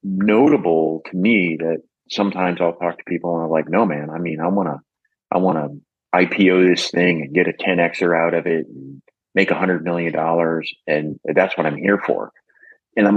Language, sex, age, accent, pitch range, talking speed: English, male, 30-49, American, 80-95 Hz, 210 wpm